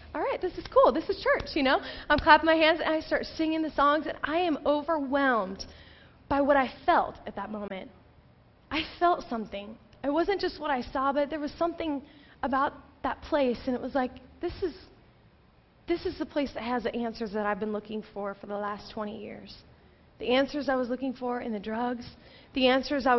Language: English